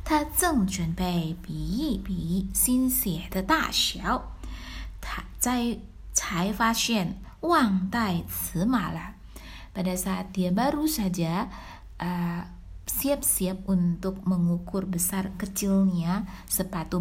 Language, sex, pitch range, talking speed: Indonesian, female, 175-225 Hz, 55 wpm